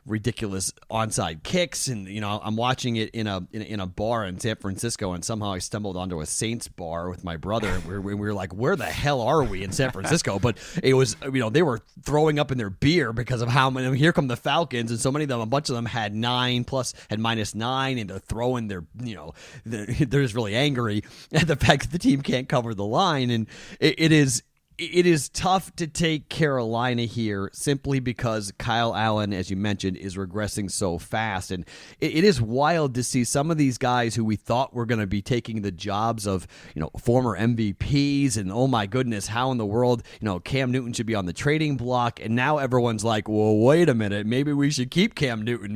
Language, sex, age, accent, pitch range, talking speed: English, male, 30-49, American, 105-135 Hz, 230 wpm